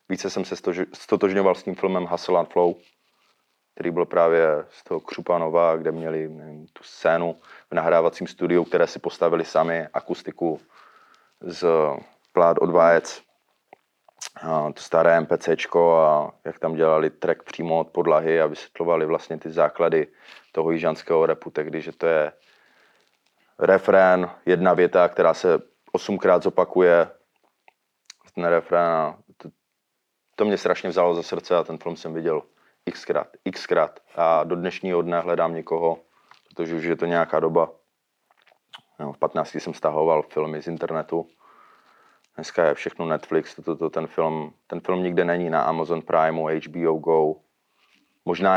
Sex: male